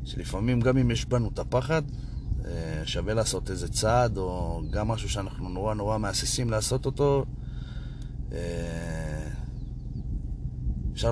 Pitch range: 95-120 Hz